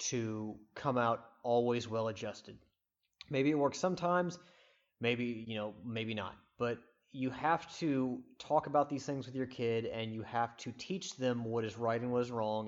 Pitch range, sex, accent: 110-130 Hz, male, American